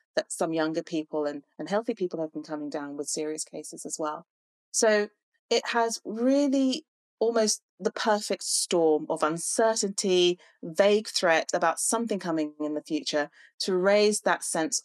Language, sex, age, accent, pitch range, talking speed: English, female, 30-49, British, 165-225 Hz, 160 wpm